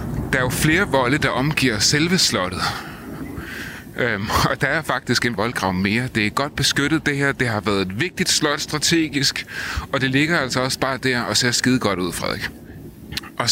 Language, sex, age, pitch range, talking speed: Danish, male, 30-49, 115-145 Hz, 195 wpm